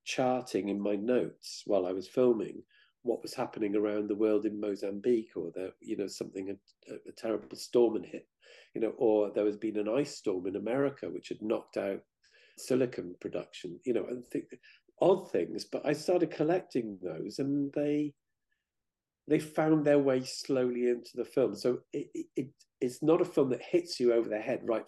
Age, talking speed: 50-69, 190 wpm